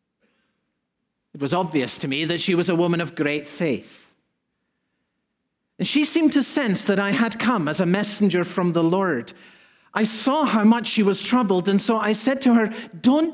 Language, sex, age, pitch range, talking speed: English, male, 50-69, 180-255 Hz, 190 wpm